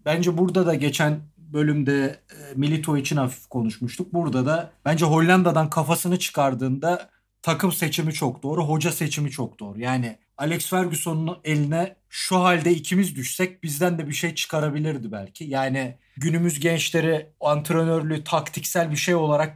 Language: Turkish